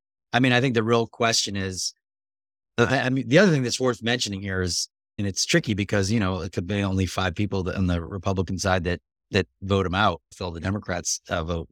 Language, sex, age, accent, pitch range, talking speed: English, male, 30-49, American, 90-105 Hz, 225 wpm